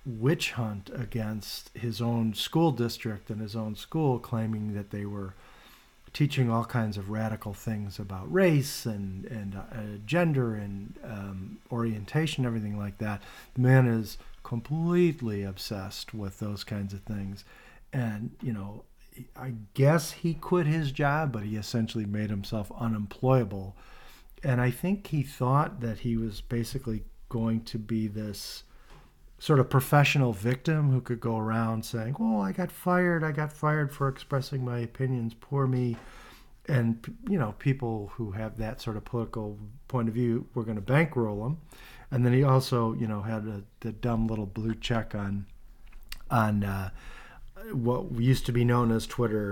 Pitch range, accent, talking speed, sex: 105-130 Hz, American, 165 wpm, male